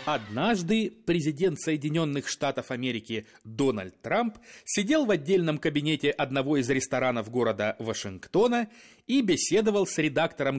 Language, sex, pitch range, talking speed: Russian, male, 130-200 Hz, 115 wpm